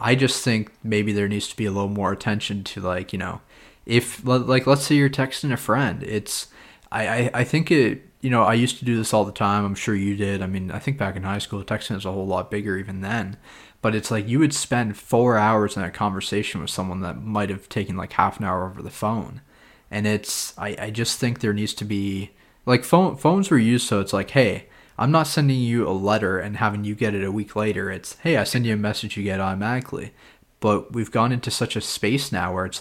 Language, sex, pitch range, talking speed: English, male, 100-120 Hz, 250 wpm